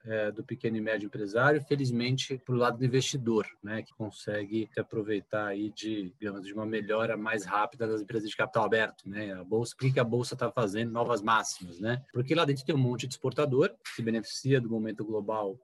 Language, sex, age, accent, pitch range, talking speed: Portuguese, male, 20-39, Brazilian, 105-130 Hz, 205 wpm